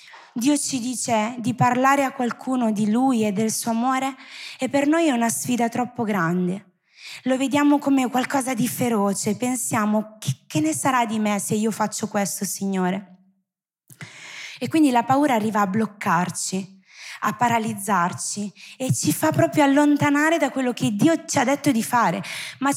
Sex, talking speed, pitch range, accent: female, 165 wpm, 190-250 Hz, native